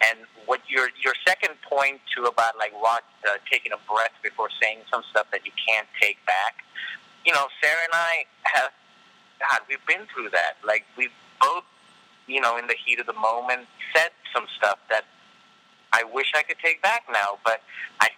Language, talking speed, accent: English, 190 wpm, American